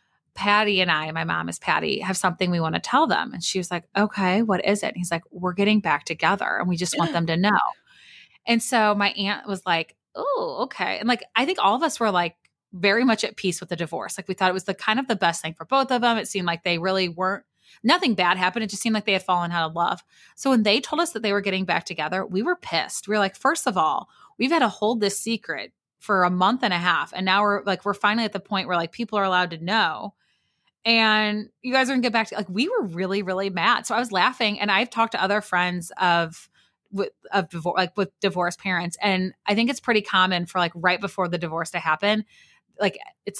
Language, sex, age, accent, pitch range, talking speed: English, female, 20-39, American, 180-220 Hz, 265 wpm